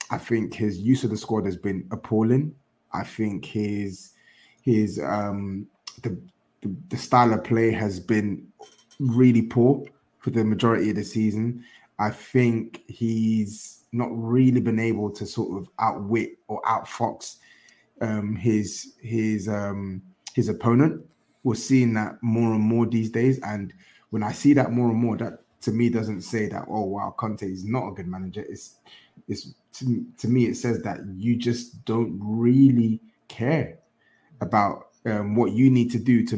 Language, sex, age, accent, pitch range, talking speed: English, male, 20-39, British, 105-120 Hz, 165 wpm